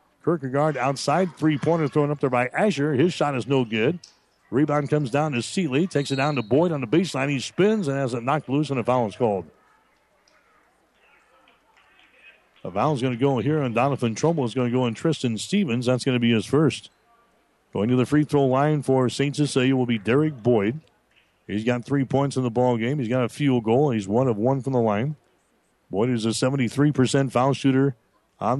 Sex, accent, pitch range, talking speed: male, American, 120-145 Hz, 210 wpm